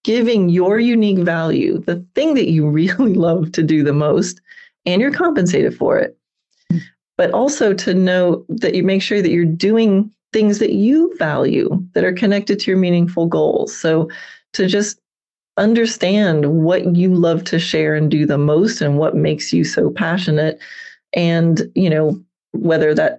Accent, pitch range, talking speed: American, 155-205 Hz, 170 wpm